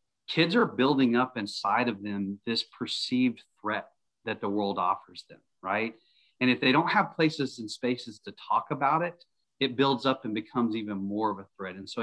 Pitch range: 105-135 Hz